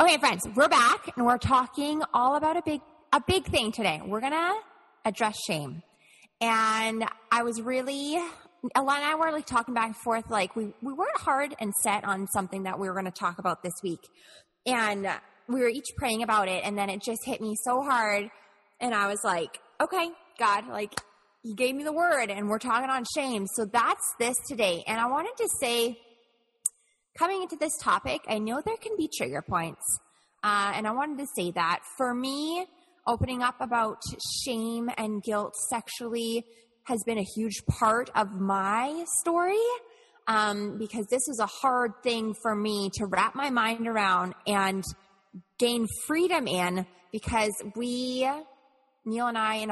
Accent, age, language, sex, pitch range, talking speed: American, 20-39, English, female, 210-270 Hz, 180 wpm